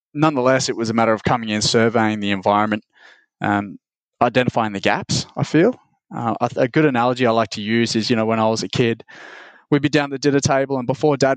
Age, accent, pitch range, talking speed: 20-39, Australian, 105-125 Hz, 225 wpm